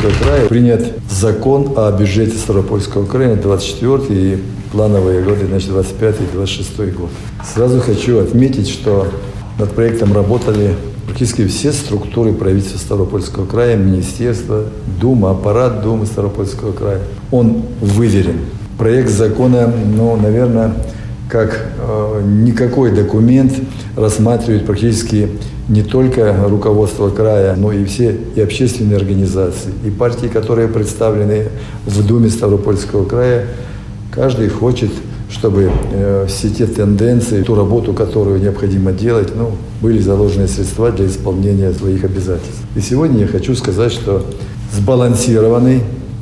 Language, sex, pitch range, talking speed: Russian, male, 100-115 Hz, 120 wpm